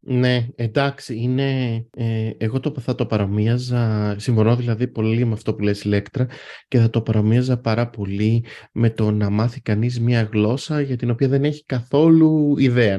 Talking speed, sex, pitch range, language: 160 wpm, male, 100-130 Hz, Greek